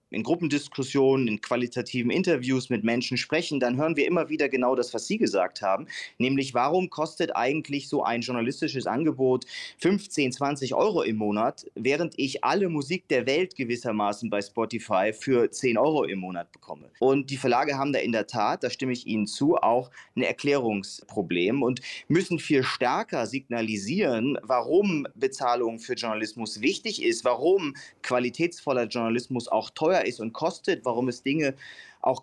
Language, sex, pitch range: German, male, 115-145 Hz